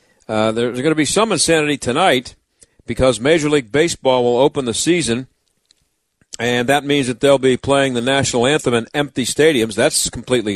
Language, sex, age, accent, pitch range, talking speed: English, male, 50-69, American, 115-150 Hz, 175 wpm